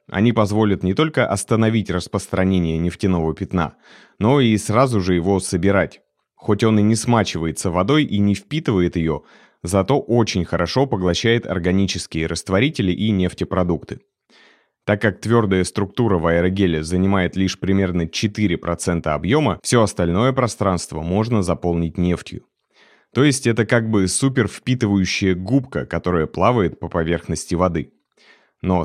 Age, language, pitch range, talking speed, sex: 30-49, Russian, 90-110 Hz, 130 wpm, male